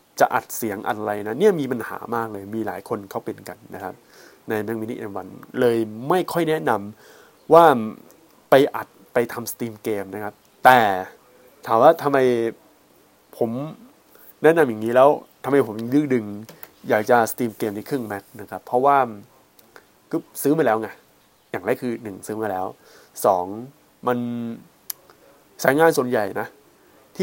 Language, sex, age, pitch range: Thai, male, 20-39, 110-140 Hz